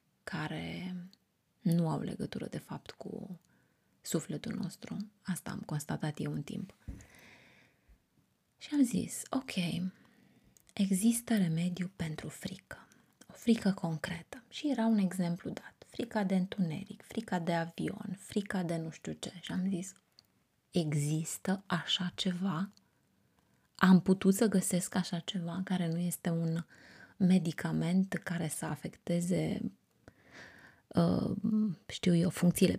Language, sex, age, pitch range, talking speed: Romanian, female, 20-39, 175-210 Hz, 120 wpm